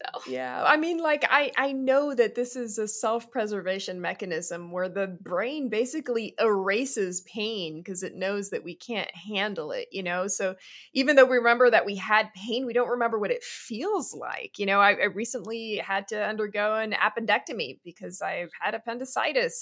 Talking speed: 180 wpm